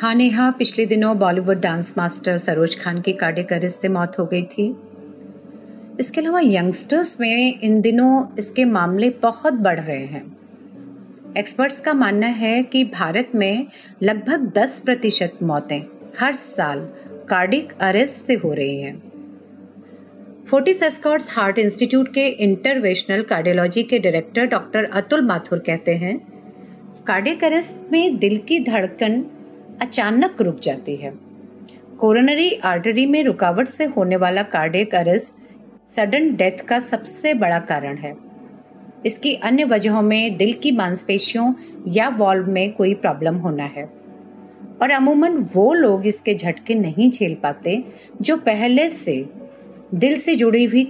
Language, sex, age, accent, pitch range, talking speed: Hindi, female, 40-59, native, 190-265 Hz, 120 wpm